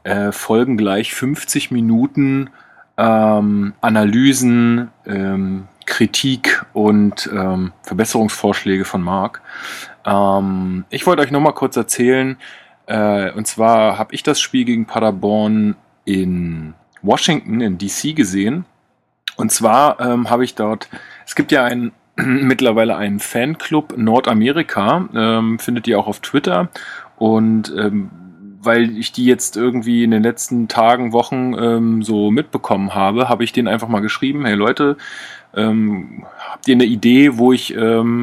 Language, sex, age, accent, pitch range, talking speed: German, male, 30-49, German, 105-125 Hz, 140 wpm